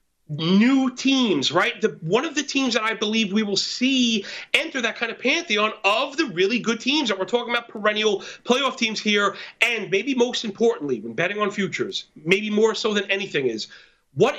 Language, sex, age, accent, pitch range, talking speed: English, male, 40-59, American, 190-260 Hz, 195 wpm